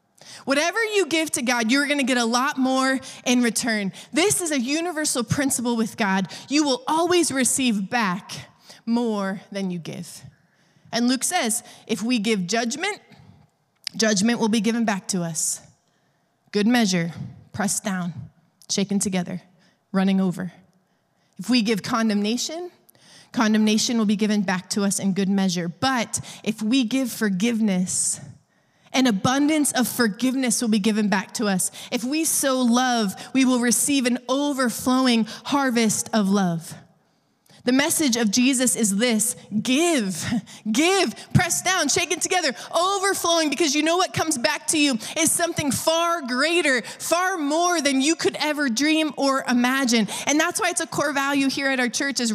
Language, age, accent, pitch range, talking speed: English, 20-39, American, 215-295 Hz, 160 wpm